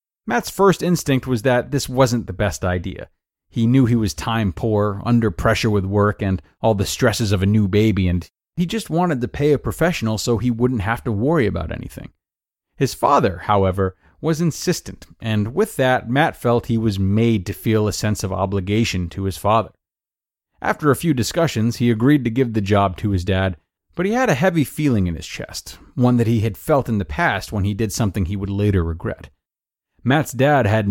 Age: 30-49